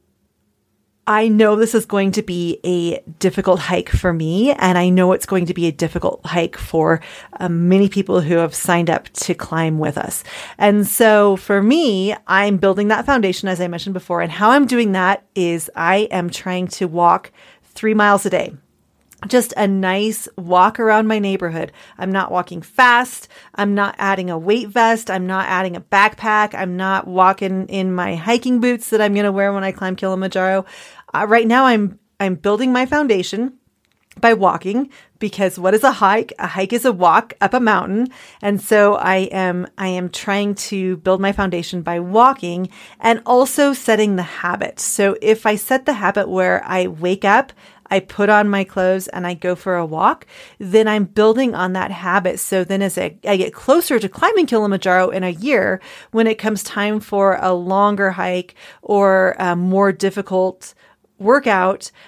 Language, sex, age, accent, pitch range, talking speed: English, female, 30-49, American, 185-215 Hz, 185 wpm